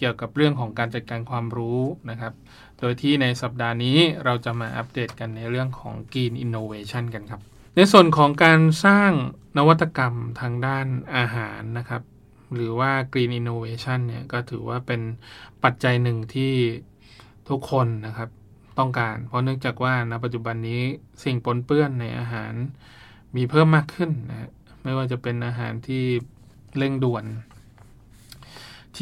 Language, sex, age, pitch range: Thai, male, 20-39, 115-130 Hz